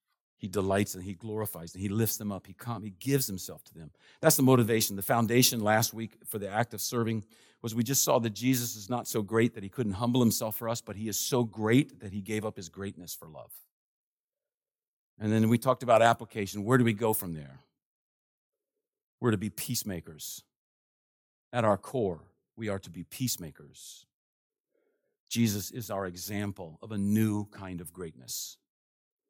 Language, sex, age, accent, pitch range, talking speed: English, male, 50-69, American, 105-135 Hz, 190 wpm